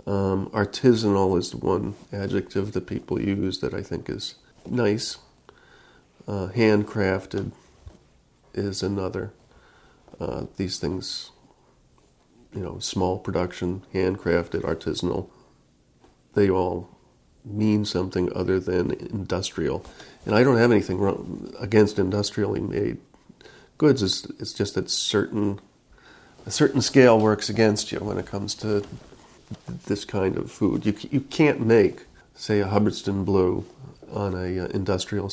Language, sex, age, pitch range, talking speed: English, male, 40-59, 95-105 Hz, 125 wpm